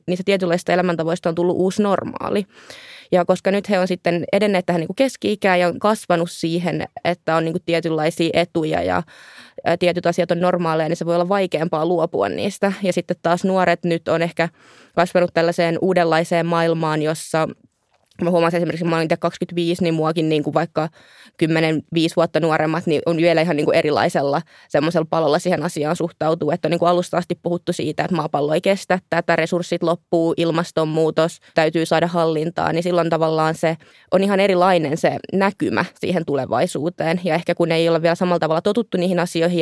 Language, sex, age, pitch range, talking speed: Finnish, female, 20-39, 160-175 Hz, 175 wpm